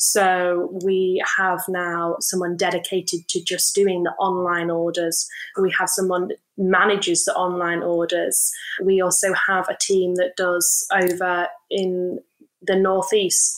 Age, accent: 10-29, British